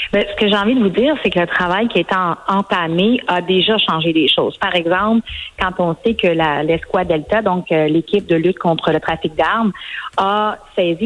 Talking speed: 215 wpm